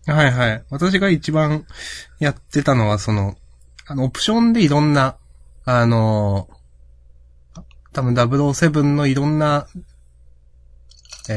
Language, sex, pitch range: Japanese, male, 90-145 Hz